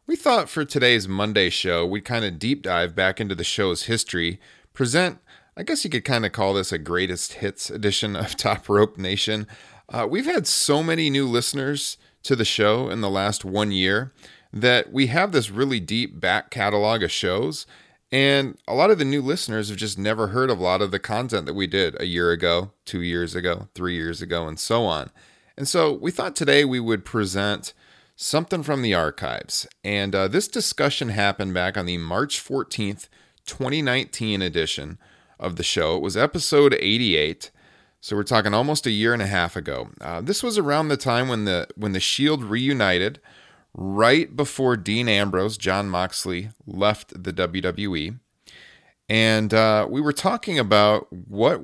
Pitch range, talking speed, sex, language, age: 95-130 Hz, 185 wpm, male, English, 30-49